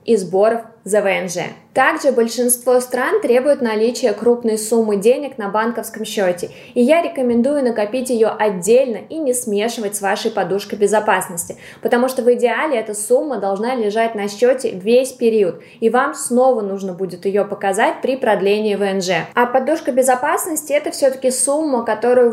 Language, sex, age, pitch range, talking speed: Russian, female, 20-39, 205-250 Hz, 155 wpm